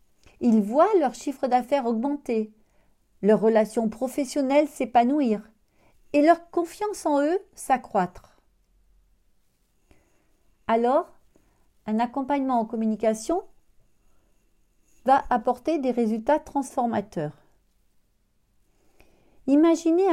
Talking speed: 80 wpm